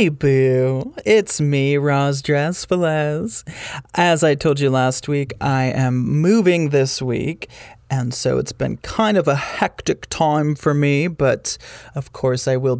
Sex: male